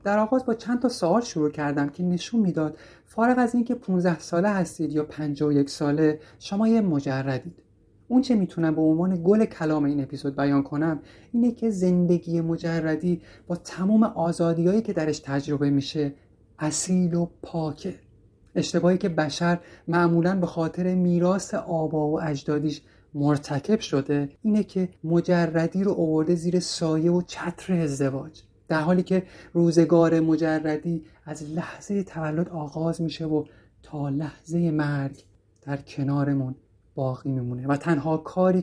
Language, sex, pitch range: Persian, male, 145-175 Hz